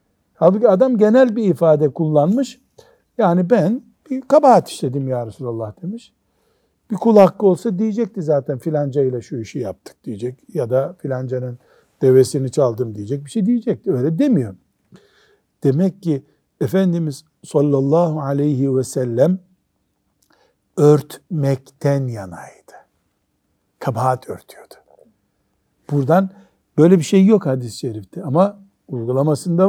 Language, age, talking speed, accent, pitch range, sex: Turkish, 60-79, 115 wpm, native, 135-195 Hz, male